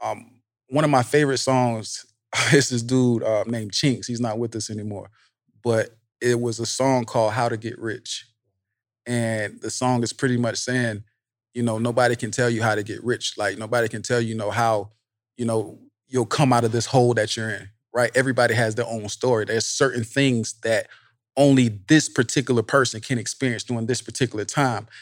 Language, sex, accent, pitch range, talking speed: English, male, American, 110-130 Hz, 200 wpm